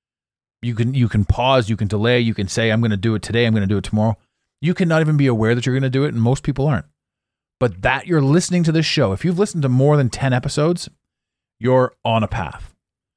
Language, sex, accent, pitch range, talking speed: English, male, American, 100-130 Hz, 260 wpm